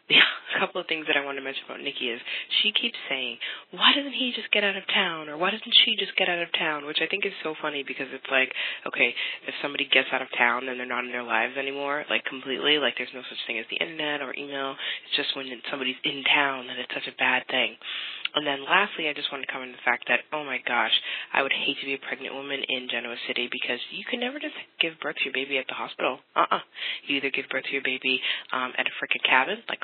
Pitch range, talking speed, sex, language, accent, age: 130-180 Hz, 270 wpm, female, English, American, 20-39